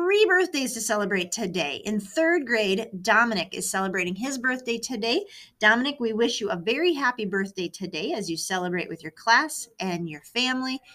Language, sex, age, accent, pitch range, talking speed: English, female, 30-49, American, 185-255 Hz, 175 wpm